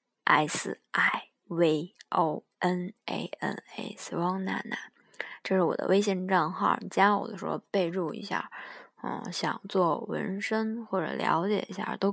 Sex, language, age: female, Chinese, 20-39